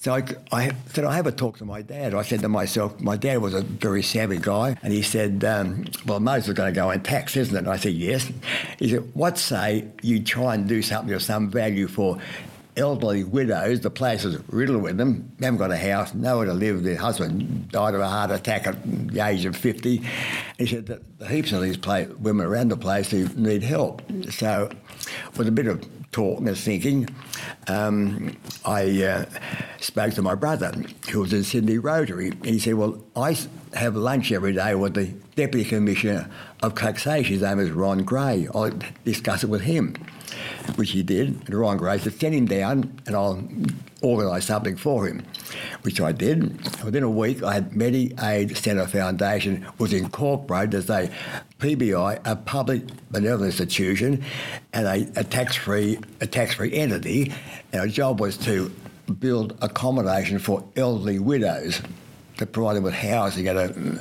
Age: 60-79